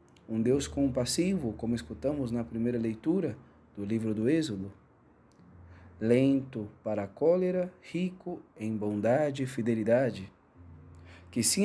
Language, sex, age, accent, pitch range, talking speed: Portuguese, male, 40-59, Brazilian, 105-145 Hz, 120 wpm